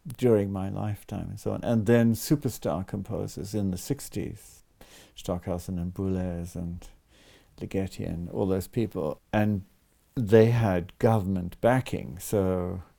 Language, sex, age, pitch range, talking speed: English, male, 60-79, 95-115 Hz, 130 wpm